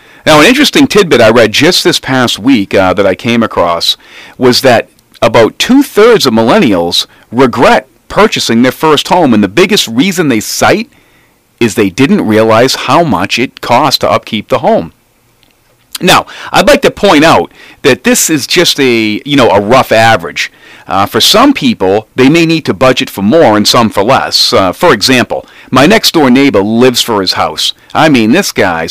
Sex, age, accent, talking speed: male, 40-59, American, 185 wpm